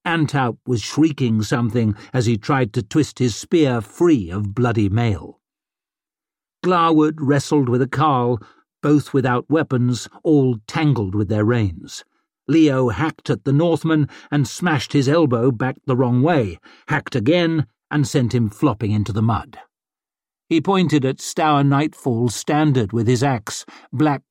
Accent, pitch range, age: British, 120-155 Hz, 50-69